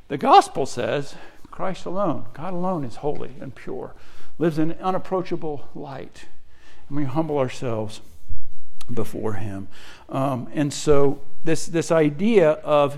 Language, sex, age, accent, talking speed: English, male, 60-79, American, 130 wpm